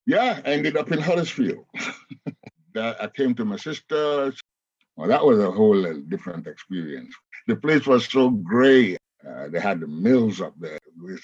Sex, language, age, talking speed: male, English, 60-79, 170 wpm